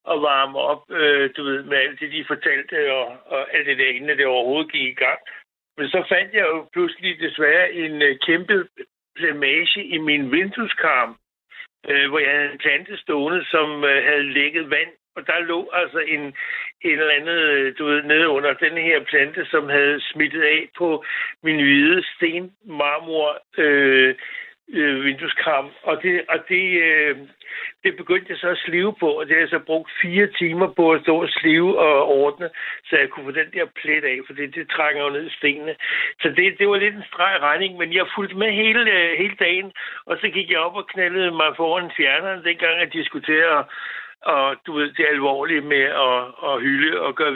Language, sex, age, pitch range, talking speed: Danish, male, 60-79, 145-185 Hz, 200 wpm